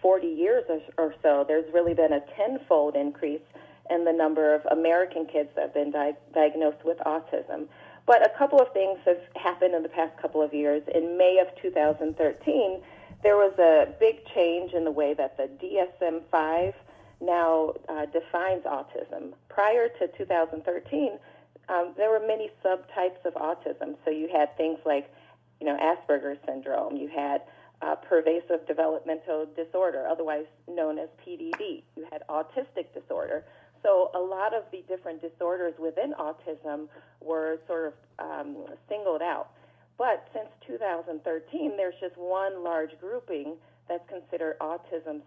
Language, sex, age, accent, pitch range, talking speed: English, female, 40-59, American, 155-185 Hz, 150 wpm